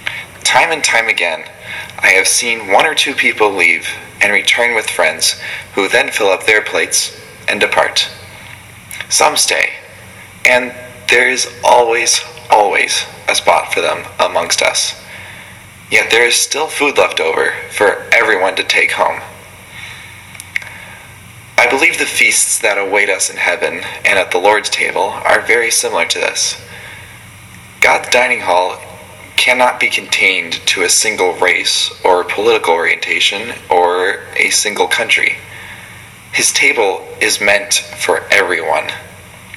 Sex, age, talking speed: male, 20-39, 140 wpm